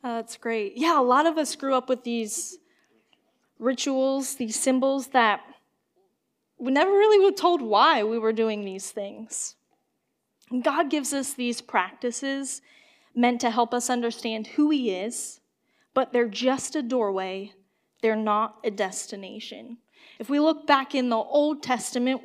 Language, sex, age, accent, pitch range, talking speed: English, female, 10-29, American, 225-275 Hz, 150 wpm